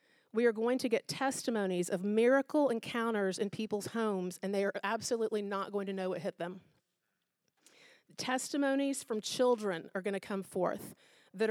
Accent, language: American, English